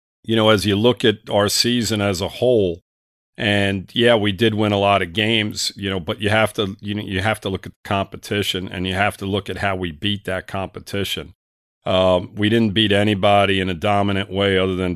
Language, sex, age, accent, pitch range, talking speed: English, male, 50-69, American, 90-115 Hz, 230 wpm